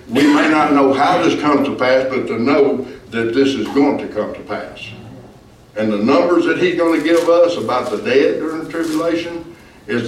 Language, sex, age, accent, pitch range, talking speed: English, male, 60-79, American, 110-140 Hz, 210 wpm